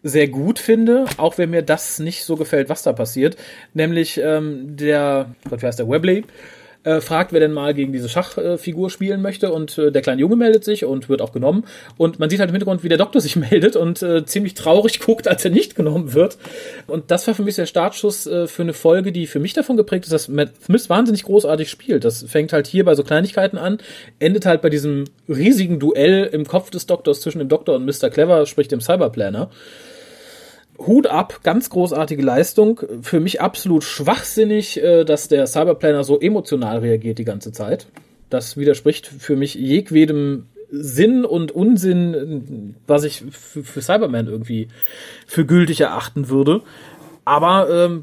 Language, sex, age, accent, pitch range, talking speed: German, male, 40-59, German, 145-185 Hz, 190 wpm